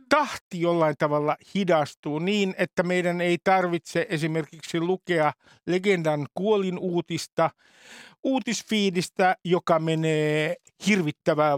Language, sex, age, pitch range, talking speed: Finnish, male, 60-79, 165-205 Hz, 95 wpm